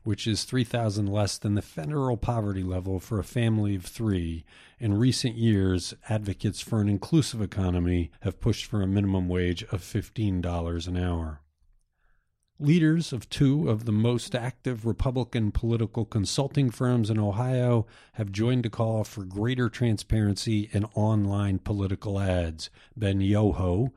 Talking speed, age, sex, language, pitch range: 145 wpm, 50-69, male, English, 95-120 Hz